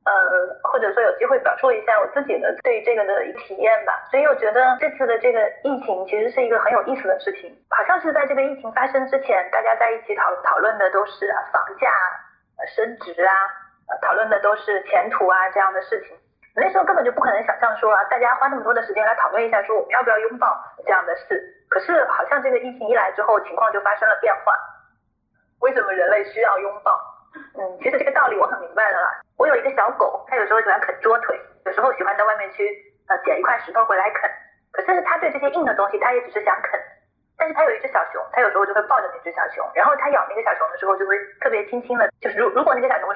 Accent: native